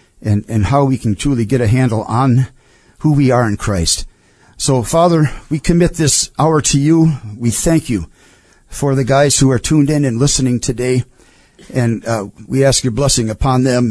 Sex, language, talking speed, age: male, English, 190 wpm, 50-69